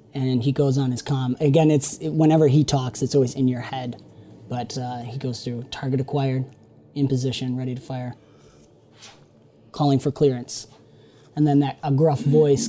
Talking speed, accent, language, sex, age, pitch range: 180 wpm, American, English, male, 20-39, 130-150 Hz